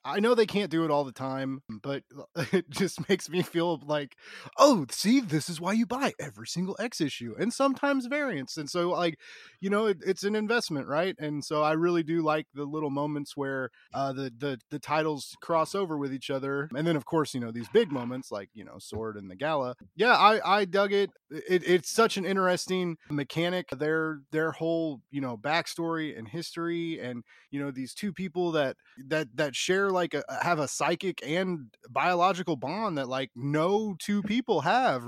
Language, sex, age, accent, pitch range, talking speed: English, male, 20-39, American, 130-170 Hz, 200 wpm